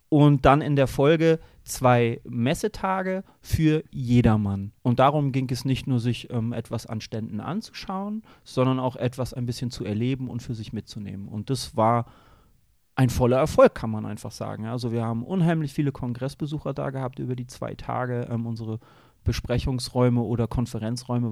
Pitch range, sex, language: 120-140 Hz, male, German